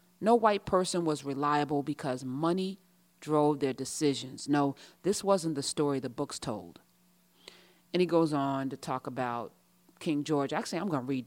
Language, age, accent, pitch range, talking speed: English, 40-59, American, 145-195 Hz, 165 wpm